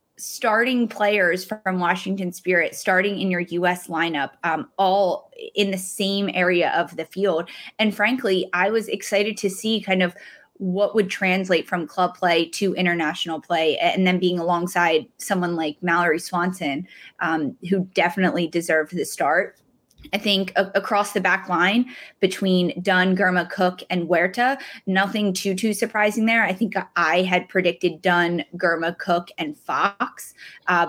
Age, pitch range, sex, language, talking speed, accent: 20-39, 175-210 Hz, female, English, 155 wpm, American